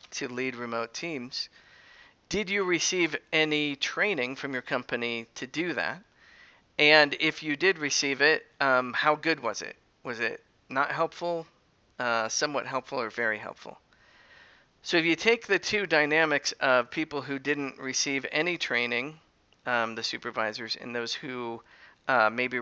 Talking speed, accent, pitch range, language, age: 155 wpm, American, 125-155 Hz, English, 40-59